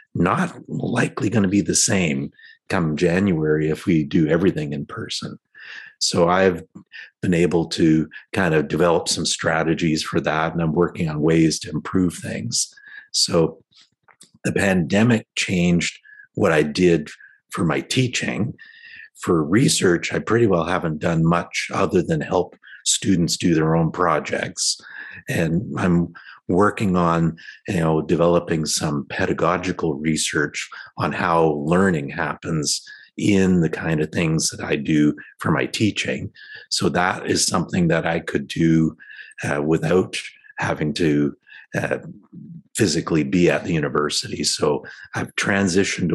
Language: English